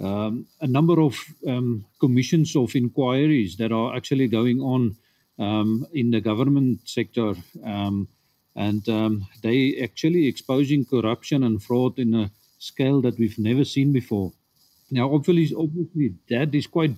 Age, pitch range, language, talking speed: 50-69, 110-135 Hz, English, 145 wpm